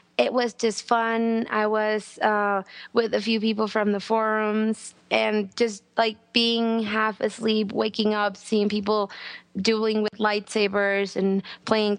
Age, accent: 20-39, American